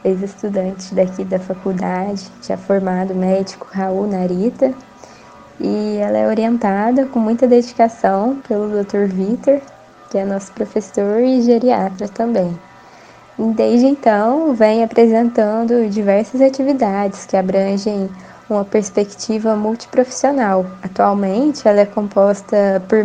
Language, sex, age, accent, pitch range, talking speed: Portuguese, female, 10-29, Brazilian, 195-230 Hz, 110 wpm